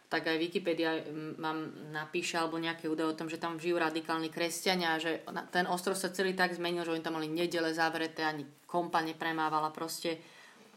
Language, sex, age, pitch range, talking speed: Slovak, female, 30-49, 160-180 Hz, 185 wpm